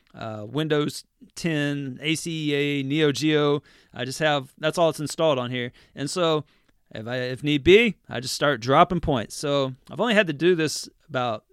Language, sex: English, male